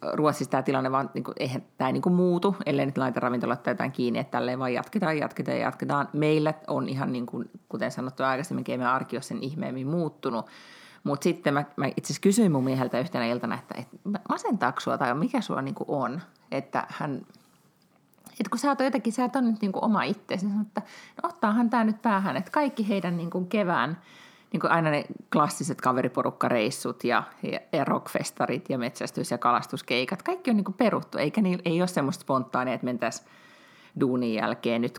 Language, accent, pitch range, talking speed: Finnish, native, 145-220 Hz, 190 wpm